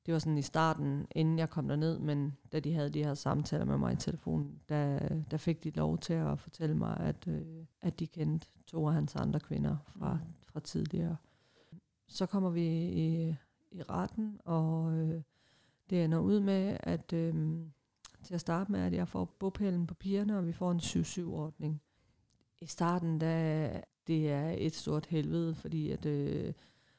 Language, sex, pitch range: Danish, female, 145-165 Hz